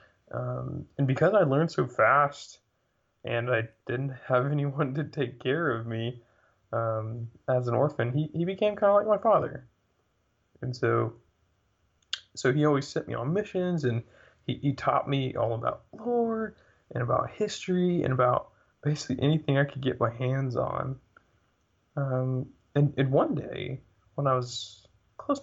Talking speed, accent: 160 wpm, American